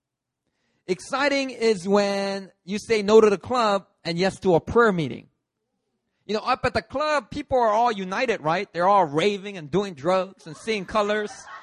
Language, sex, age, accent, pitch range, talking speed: English, male, 30-49, American, 175-275 Hz, 180 wpm